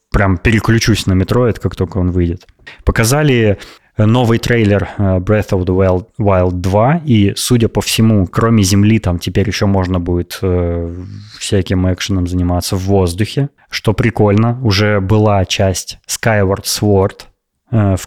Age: 20-39